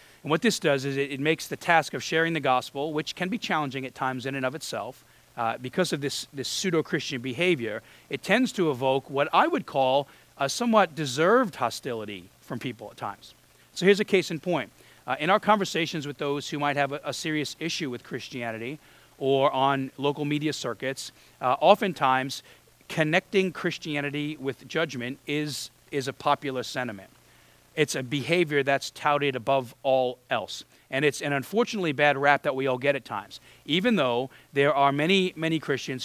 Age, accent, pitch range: 40-59, American, 130-160 Hz